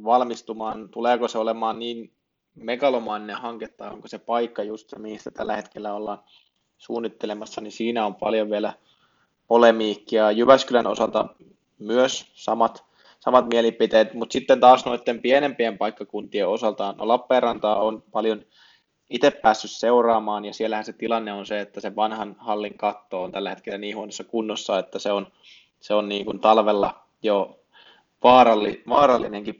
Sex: male